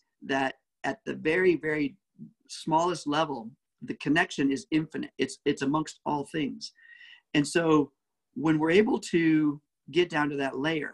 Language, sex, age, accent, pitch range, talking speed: English, male, 50-69, American, 145-230 Hz, 150 wpm